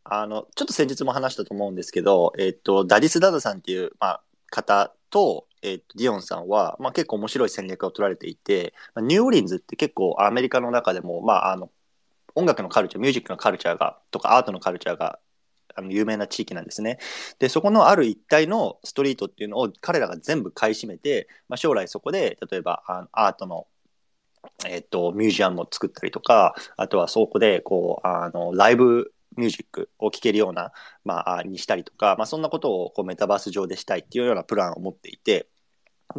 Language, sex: Japanese, male